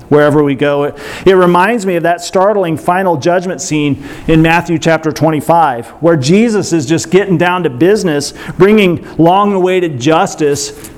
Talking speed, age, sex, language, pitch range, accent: 155 wpm, 40-59, male, English, 150-205 Hz, American